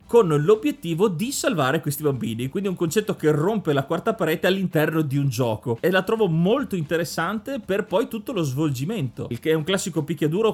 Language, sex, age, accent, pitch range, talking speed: Italian, male, 30-49, native, 135-185 Hz, 195 wpm